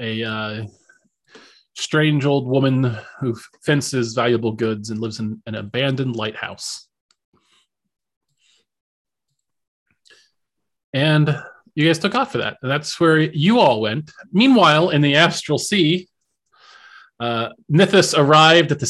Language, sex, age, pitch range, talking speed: English, male, 30-49, 120-160 Hz, 120 wpm